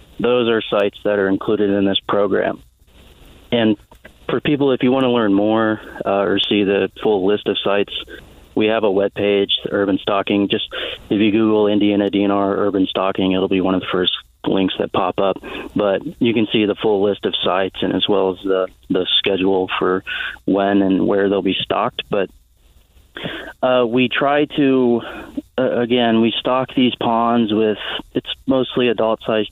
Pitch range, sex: 100-115 Hz, male